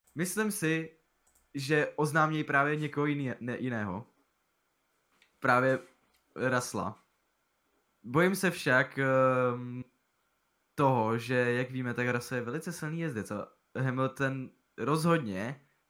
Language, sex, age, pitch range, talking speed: Czech, male, 20-39, 110-130 Hz, 105 wpm